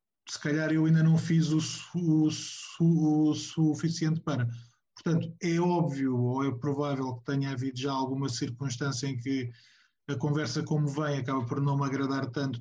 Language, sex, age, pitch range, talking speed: Portuguese, male, 20-39, 140-165 Hz, 170 wpm